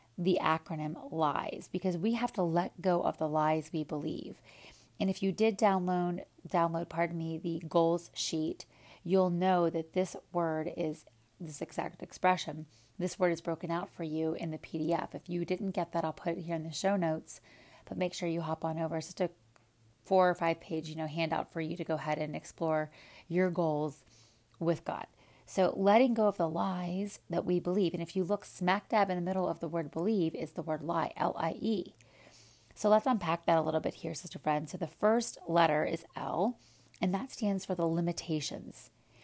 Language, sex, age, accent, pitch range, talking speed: English, female, 30-49, American, 160-185 Hz, 205 wpm